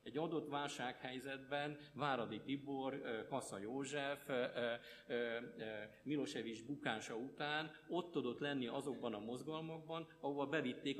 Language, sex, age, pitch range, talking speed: Hungarian, male, 50-69, 120-145 Hz, 100 wpm